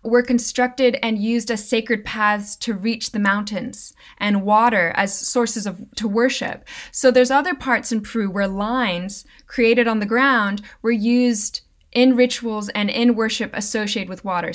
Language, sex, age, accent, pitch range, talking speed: English, female, 20-39, American, 205-245 Hz, 165 wpm